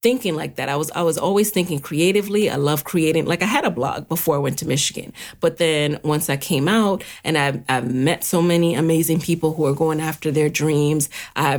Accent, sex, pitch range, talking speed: American, female, 140-180 Hz, 230 wpm